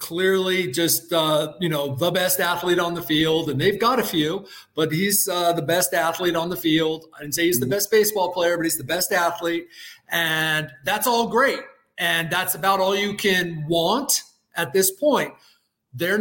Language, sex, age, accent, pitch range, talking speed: English, male, 30-49, American, 175-220 Hz, 195 wpm